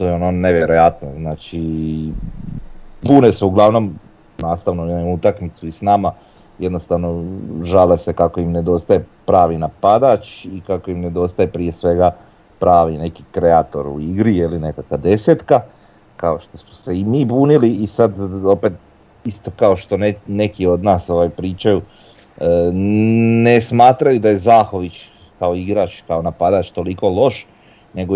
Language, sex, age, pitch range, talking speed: Croatian, male, 40-59, 85-100 Hz, 145 wpm